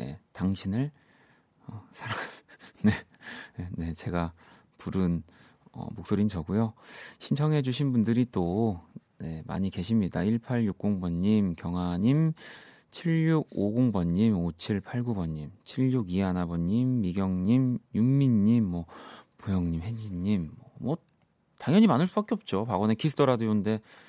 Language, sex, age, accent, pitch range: Korean, male, 30-49, native, 90-125 Hz